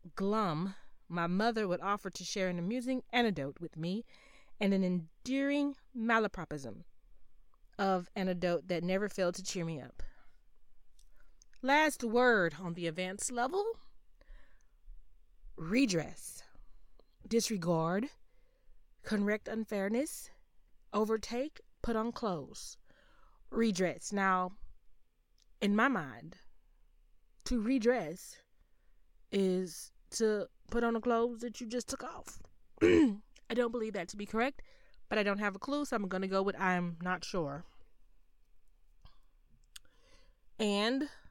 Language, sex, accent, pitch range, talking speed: English, female, American, 170-230 Hz, 115 wpm